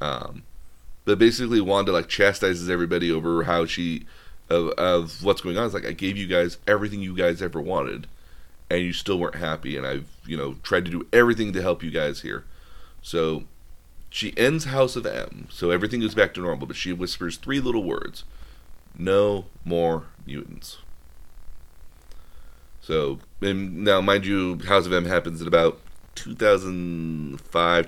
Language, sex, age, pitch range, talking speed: English, male, 30-49, 80-95 Hz, 165 wpm